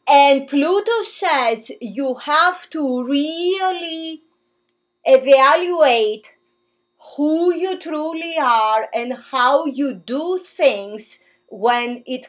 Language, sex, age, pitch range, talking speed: English, female, 30-49, 240-345 Hz, 95 wpm